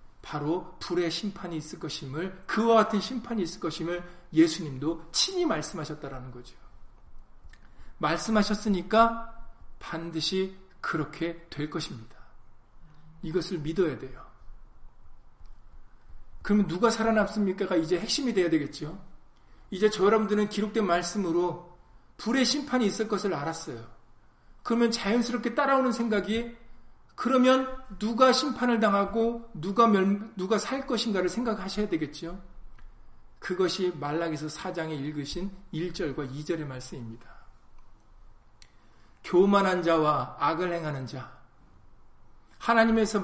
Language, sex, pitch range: Korean, male, 155-215 Hz